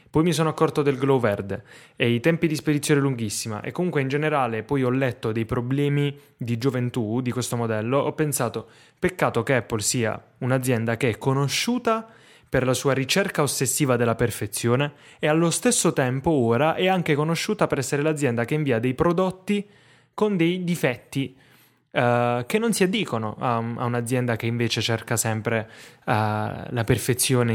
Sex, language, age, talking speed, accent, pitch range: male, Italian, 10-29, 165 wpm, native, 120-155 Hz